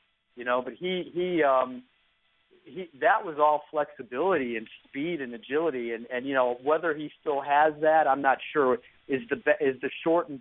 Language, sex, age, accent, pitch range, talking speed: English, male, 40-59, American, 125-150 Hz, 185 wpm